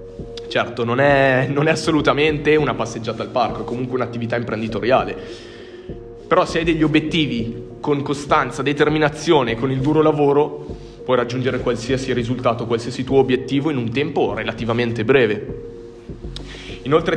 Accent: native